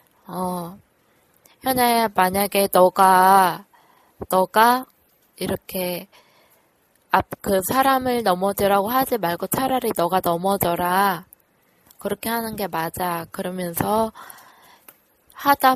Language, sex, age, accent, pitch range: Korean, female, 20-39, native, 185-225 Hz